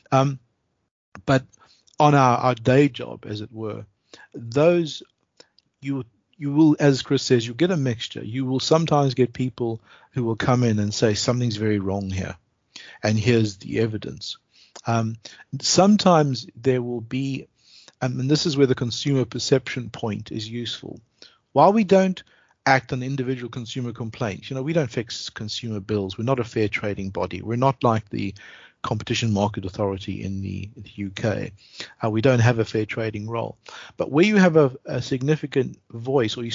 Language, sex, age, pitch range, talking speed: English, male, 50-69, 110-135 Hz, 175 wpm